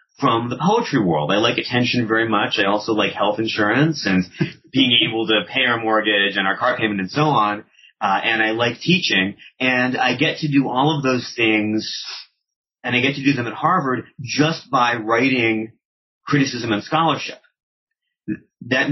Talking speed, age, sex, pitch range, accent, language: 180 wpm, 30-49, male, 100-135 Hz, American, English